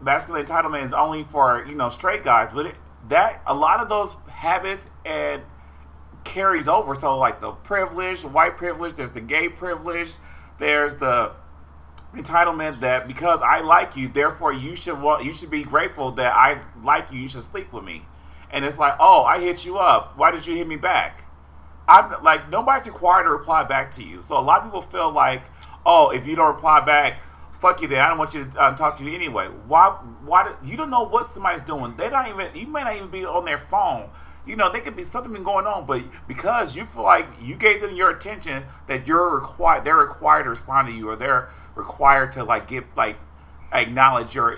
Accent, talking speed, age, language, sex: American, 215 wpm, 30-49, English, male